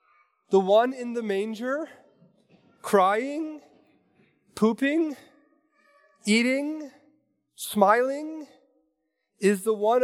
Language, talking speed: English, 70 wpm